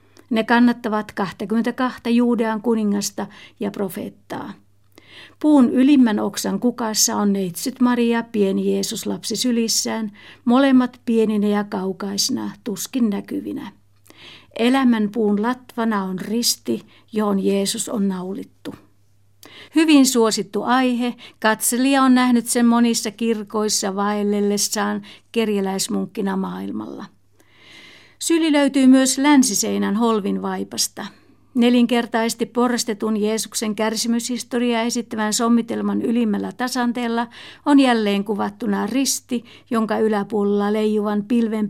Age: 60-79